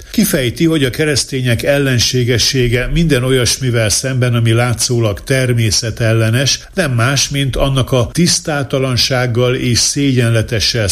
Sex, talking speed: male, 105 wpm